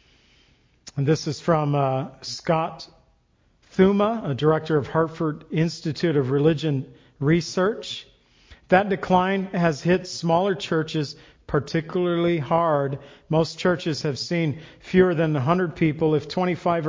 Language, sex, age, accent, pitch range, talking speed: English, male, 50-69, American, 145-175 Hz, 115 wpm